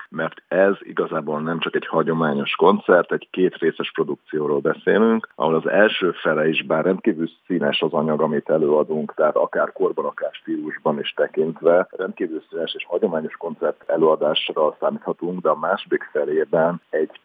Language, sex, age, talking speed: Hungarian, male, 50-69, 155 wpm